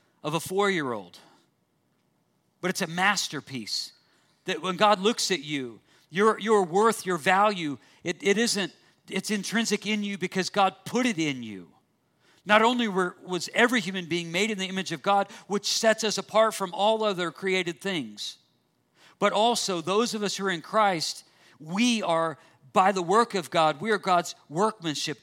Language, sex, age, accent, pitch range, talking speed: Russian, male, 50-69, American, 155-200 Hz, 175 wpm